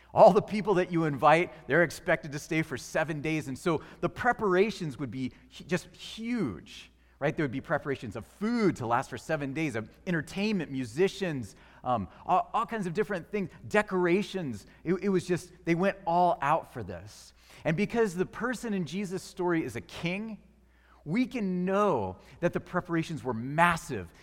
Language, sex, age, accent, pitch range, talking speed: English, male, 30-49, American, 120-180 Hz, 180 wpm